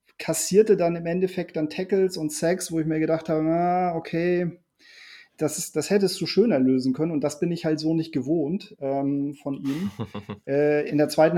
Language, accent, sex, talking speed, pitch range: German, German, male, 200 wpm, 140-160 Hz